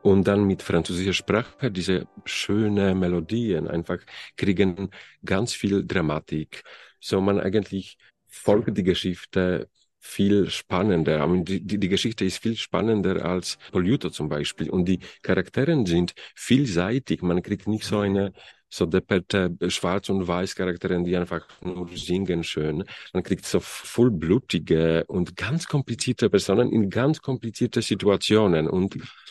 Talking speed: 135 wpm